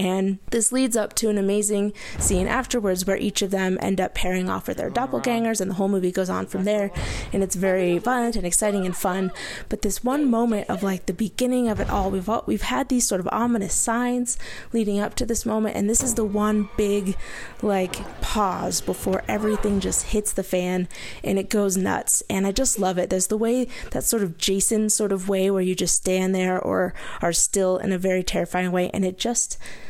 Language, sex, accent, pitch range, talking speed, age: English, female, American, 185-230 Hz, 220 wpm, 20-39